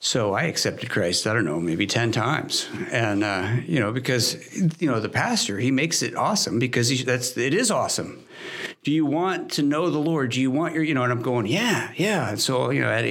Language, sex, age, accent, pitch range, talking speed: English, male, 60-79, American, 110-135 Hz, 240 wpm